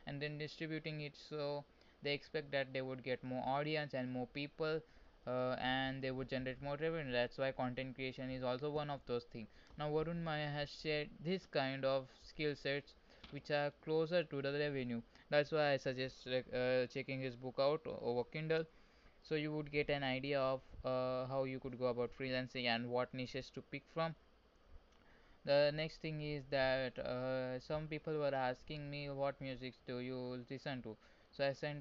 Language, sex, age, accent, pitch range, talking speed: Hindi, male, 20-39, native, 125-145 Hz, 190 wpm